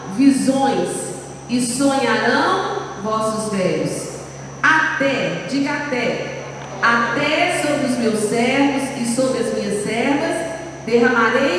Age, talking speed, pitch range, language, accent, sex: 50-69, 100 wpm, 230-295 Hz, Portuguese, Brazilian, female